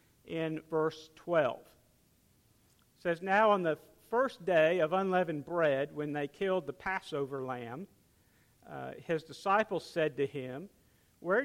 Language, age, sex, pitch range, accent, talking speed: English, 50-69, male, 150-200 Hz, American, 135 wpm